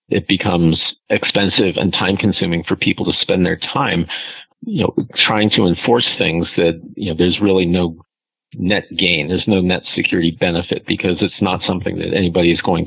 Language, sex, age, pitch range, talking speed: English, male, 40-59, 90-105 Hz, 180 wpm